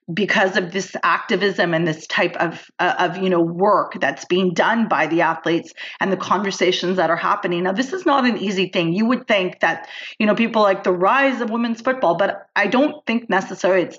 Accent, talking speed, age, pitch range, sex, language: American, 215 wpm, 30-49, 185-230 Hz, female, English